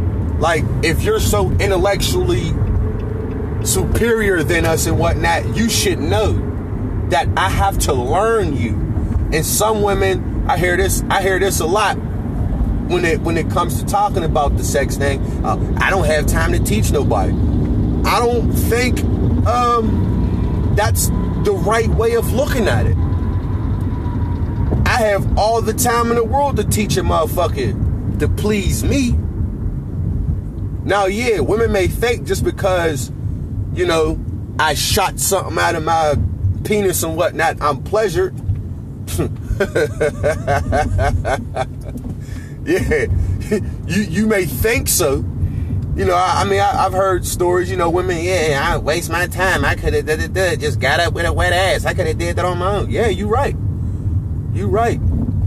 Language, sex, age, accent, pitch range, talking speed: English, male, 30-49, American, 95-120 Hz, 155 wpm